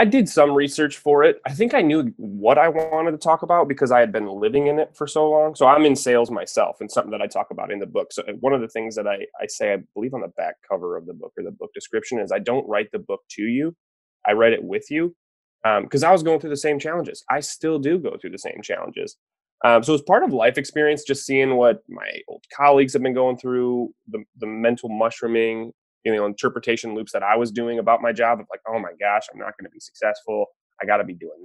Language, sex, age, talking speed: English, male, 20-39, 265 wpm